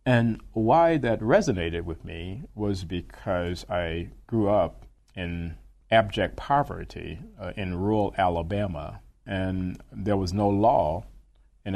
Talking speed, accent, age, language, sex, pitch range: 120 wpm, American, 40-59, English, male, 85-105 Hz